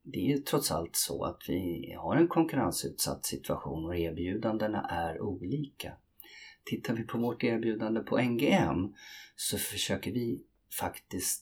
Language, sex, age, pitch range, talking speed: Swedish, male, 30-49, 85-115 Hz, 140 wpm